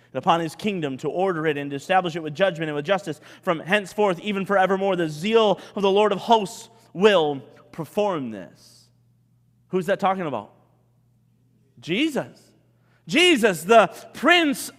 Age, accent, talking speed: 30-49, American, 150 wpm